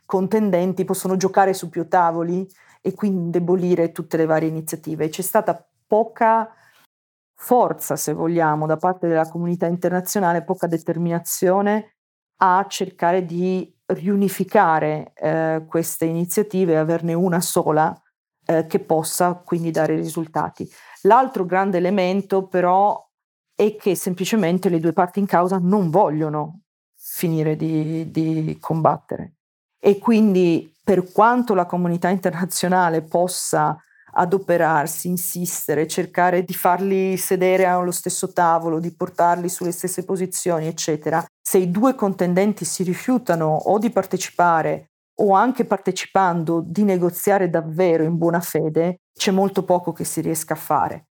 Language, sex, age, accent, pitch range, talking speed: Italian, female, 40-59, native, 165-190 Hz, 130 wpm